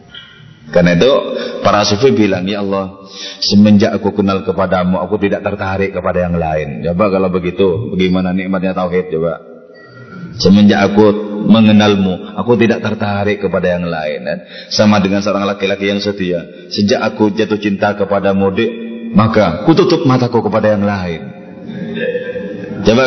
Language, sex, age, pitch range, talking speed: Indonesian, male, 30-49, 95-130 Hz, 140 wpm